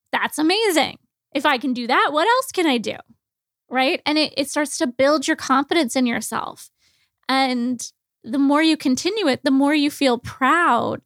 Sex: female